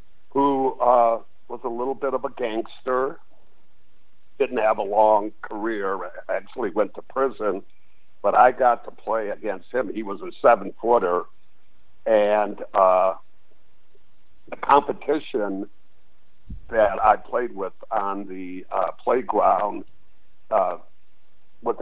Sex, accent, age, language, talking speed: male, American, 60-79, English, 120 wpm